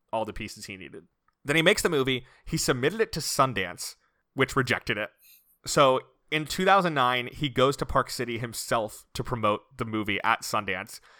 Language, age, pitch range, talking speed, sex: English, 30-49, 115-140 Hz, 175 wpm, male